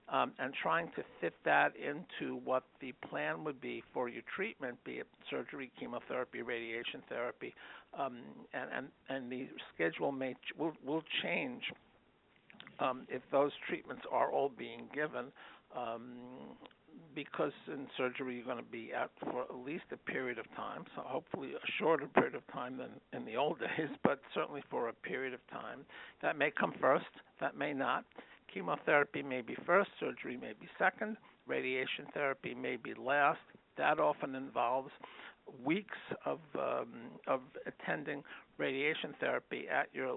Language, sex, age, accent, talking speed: English, male, 60-79, American, 160 wpm